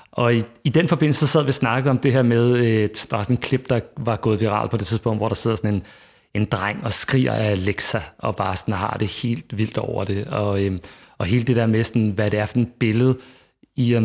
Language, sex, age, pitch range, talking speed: Danish, male, 30-49, 105-125 Hz, 265 wpm